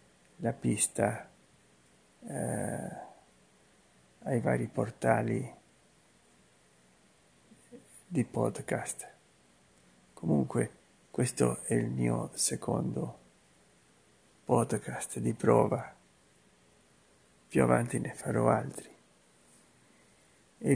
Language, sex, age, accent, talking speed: Italian, male, 50-69, native, 65 wpm